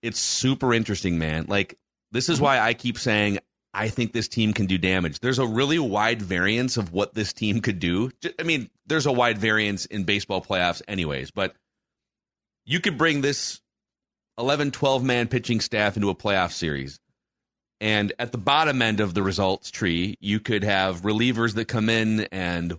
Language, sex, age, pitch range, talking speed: English, male, 30-49, 95-125 Hz, 180 wpm